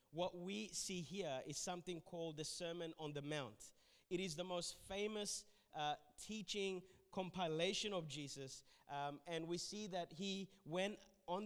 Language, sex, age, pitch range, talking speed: English, male, 20-39, 165-205 Hz, 155 wpm